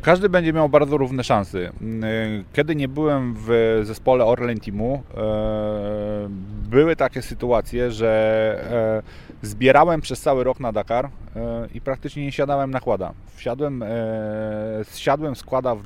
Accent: native